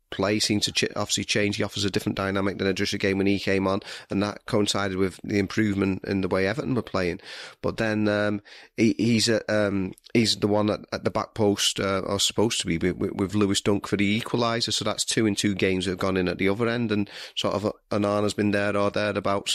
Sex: male